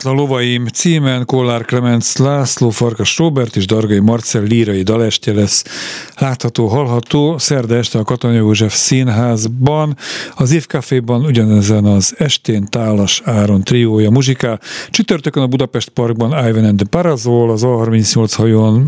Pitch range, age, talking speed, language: 110-130 Hz, 50-69, 135 wpm, Hungarian